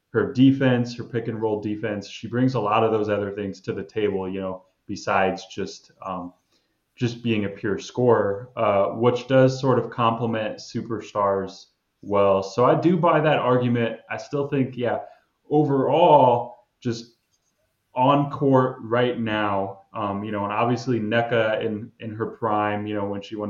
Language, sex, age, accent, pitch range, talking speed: English, male, 20-39, American, 100-130 Hz, 170 wpm